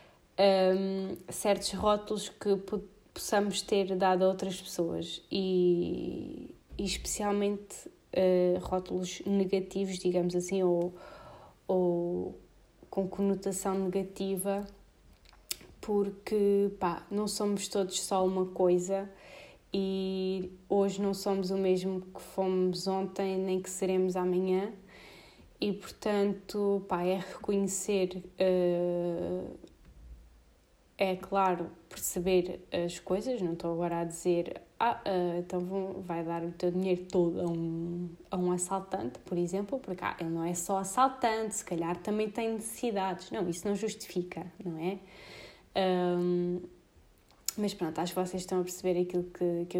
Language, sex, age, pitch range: Portuguese, female, 20-39, 180-195 Hz